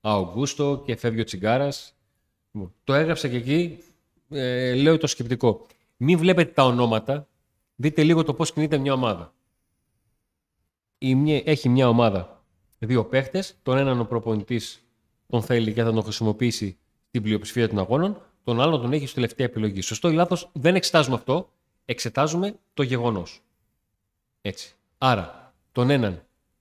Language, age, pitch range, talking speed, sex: Greek, 30-49, 110-150 Hz, 140 wpm, male